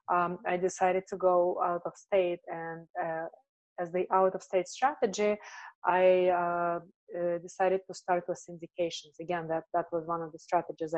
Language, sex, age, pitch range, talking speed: English, female, 20-39, 165-185 Hz, 155 wpm